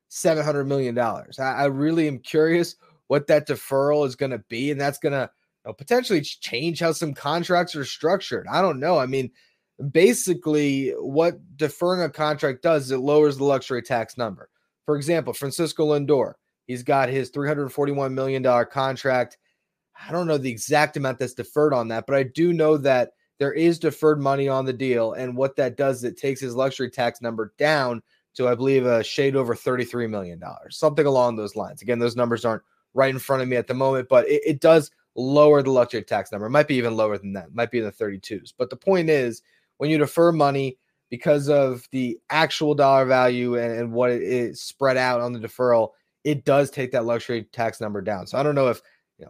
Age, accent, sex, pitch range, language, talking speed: 20-39, American, male, 125-155 Hz, English, 210 wpm